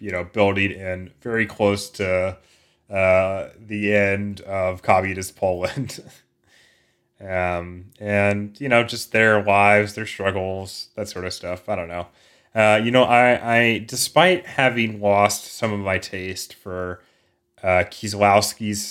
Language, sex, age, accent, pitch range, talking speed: English, male, 30-49, American, 90-105 Hz, 140 wpm